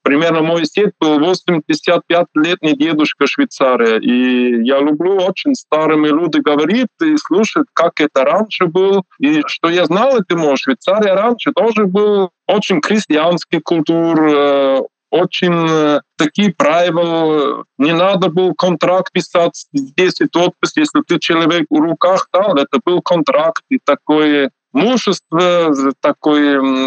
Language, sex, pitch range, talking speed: Russian, male, 165-205 Hz, 125 wpm